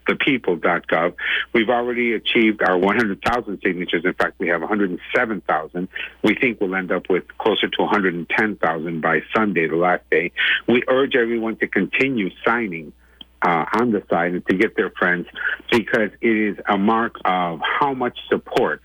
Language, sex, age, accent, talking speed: English, male, 60-79, American, 160 wpm